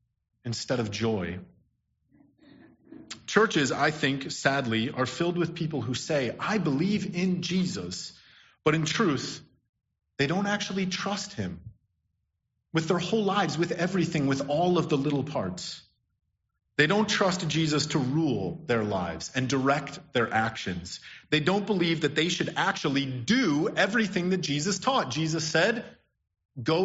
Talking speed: 145 wpm